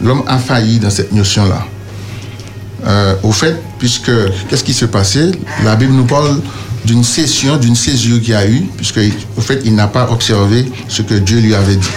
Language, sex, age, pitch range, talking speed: French, male, 60-79, 105-125 Hz, 195 wpm